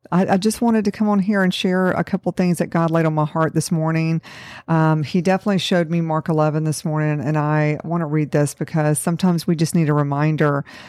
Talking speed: 235 wpm